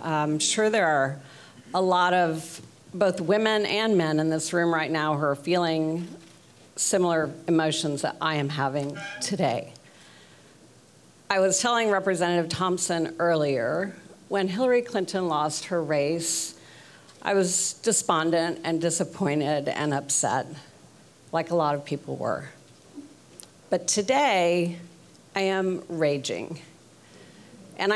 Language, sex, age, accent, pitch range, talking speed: English, female, 50-69, American, 155-200 Hz, 120 wpm